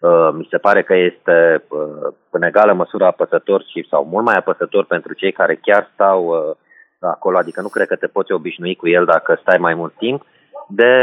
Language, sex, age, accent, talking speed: Romanian, male, 30-49, native, 205 wpm